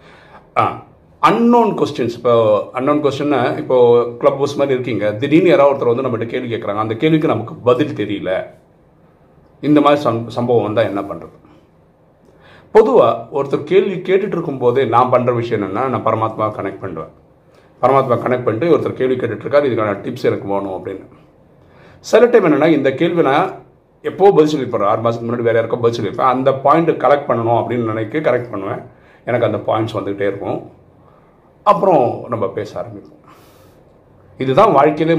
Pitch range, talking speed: 115-150 Hz, 145 wpm